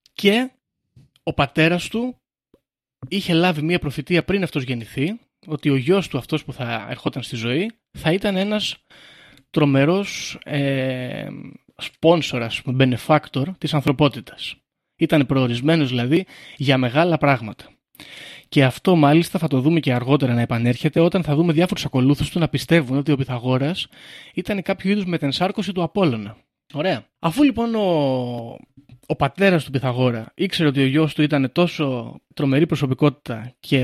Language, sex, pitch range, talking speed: Greek, male, 130-170 Hz, 145 wpm